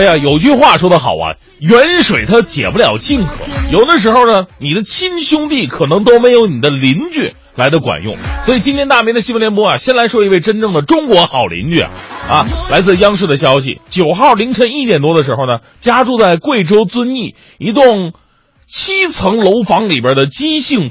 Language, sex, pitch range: Chinese, male, 175-255 Hz